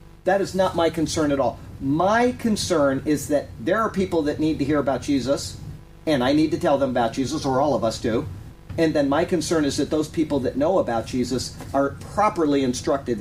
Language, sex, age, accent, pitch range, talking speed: English, male, 40-59, American, 120-155 Hz, 220 wpm